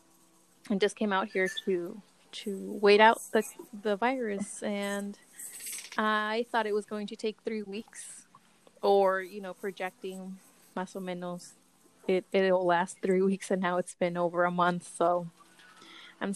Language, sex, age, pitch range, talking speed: English, female, 20-39, 185-220 Hz, 160 wpm